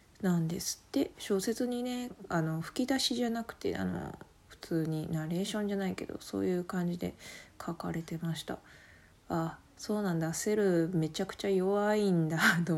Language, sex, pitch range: Japanese, female, 160-205 Hz